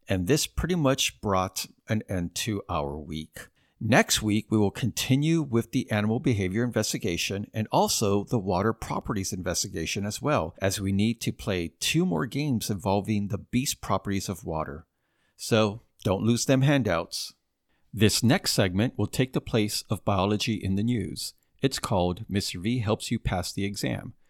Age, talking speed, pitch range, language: 50-69, 170 wpm, 95-120 Hz, English